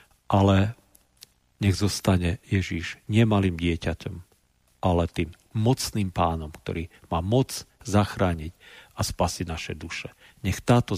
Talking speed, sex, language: 110 wpm, male, Slovak